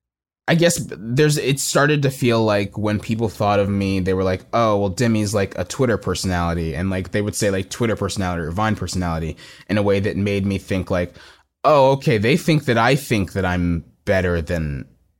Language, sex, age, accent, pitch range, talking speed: English, male, 20-39, American, 85-105 Hz, 210 wpm